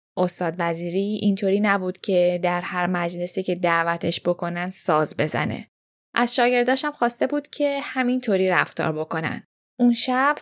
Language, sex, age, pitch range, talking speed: Persian, female, 10-29, 170-215 Hz, 130 wpm